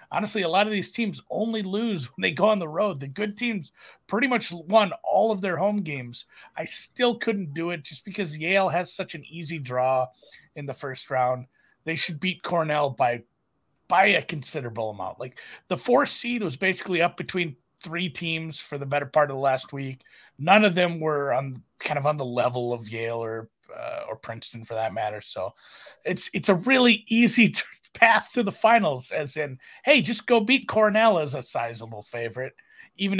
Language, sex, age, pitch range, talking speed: English, male, 30-49, 140-205 Hz, 200 wpm